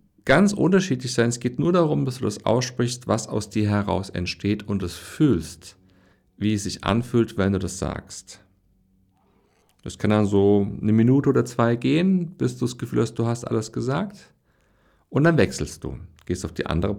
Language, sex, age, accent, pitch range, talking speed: German, male, 60-79, German, 90-120 Hz, 185 wpm